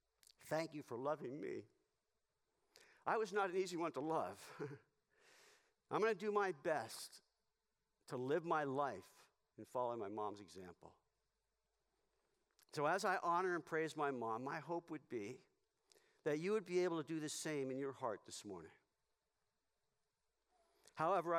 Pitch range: 140-200 Hz